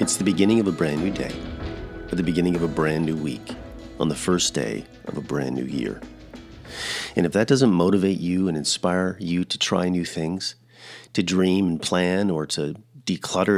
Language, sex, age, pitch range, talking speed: English, male, 40-59, 90-120 Hz, 200 wpm